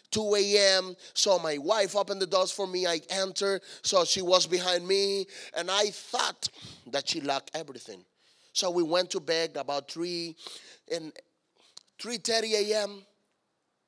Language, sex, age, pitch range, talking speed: English, male, 30-49, 170-245 Hz, 145 wpm